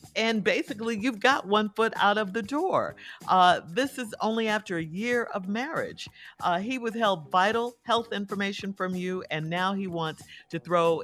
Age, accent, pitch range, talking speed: 50-69, American, 140-210 Hz, 180 wpm